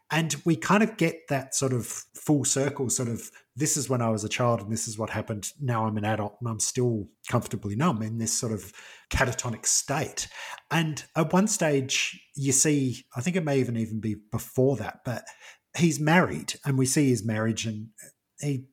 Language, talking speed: English, 200 wpm